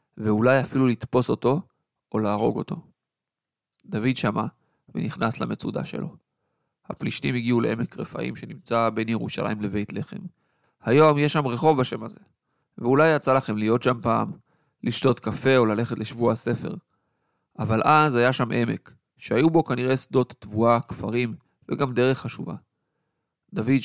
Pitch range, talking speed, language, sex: 115-140 Hz, 135 wpm, English, male